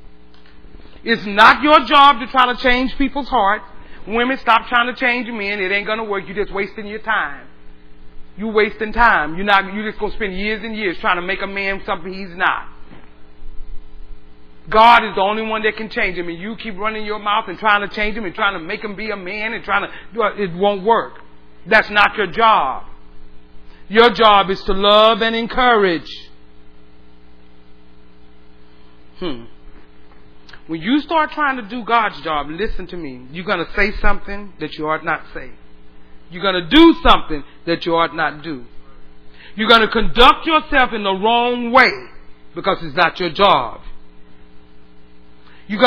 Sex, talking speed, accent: male, 180 wpm, American